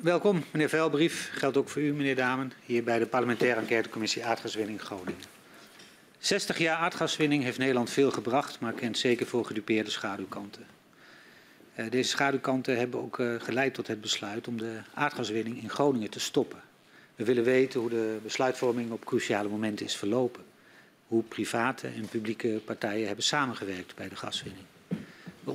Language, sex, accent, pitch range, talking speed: Dutch, male, Dutch, 110-135 Hz, 155 wpm